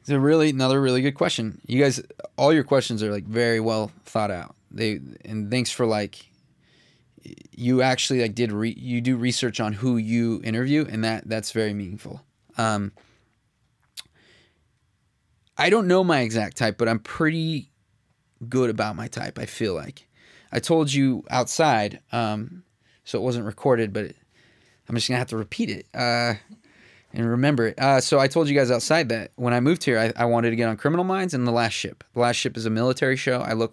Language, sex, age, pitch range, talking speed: English, male, 20-39, 110-130 Hz, 200 wpm